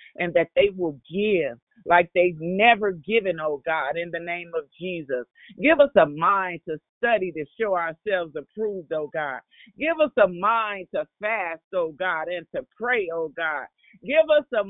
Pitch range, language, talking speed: 190-290 Hz, English, 180 wpm